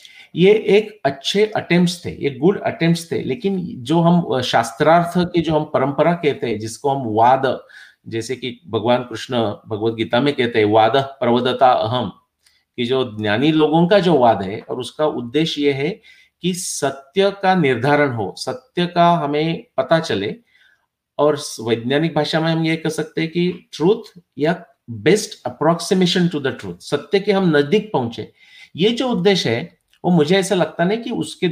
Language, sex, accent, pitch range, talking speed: English, male, Indian, 130-180 Hz, 120 wpm